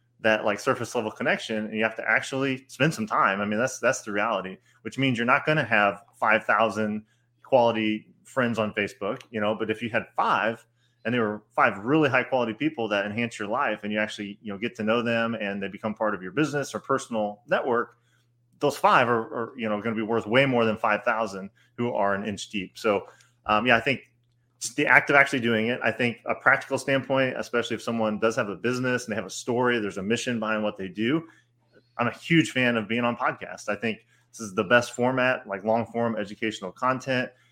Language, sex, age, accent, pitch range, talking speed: English, male, 30-49, American, 105-125 Hz, 235 wpm